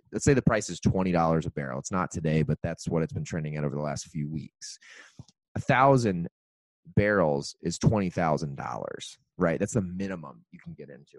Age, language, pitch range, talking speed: 30-49, English, 85-105 Hz, 195 wpm